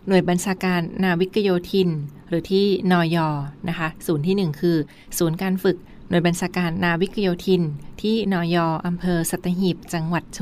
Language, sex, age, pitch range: Thai, female, 20-39, 165-185 Hz